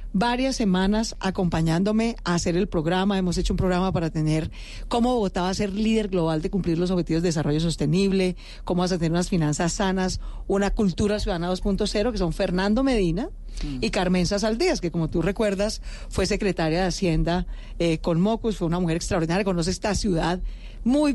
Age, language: 40-59, Spanish